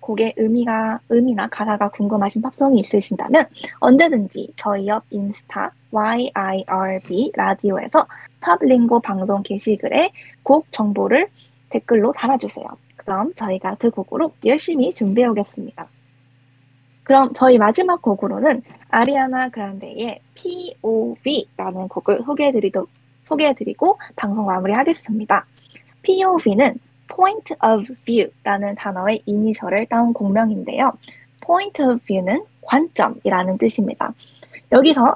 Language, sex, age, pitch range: Korean, female, 20-39, 200-265 Hz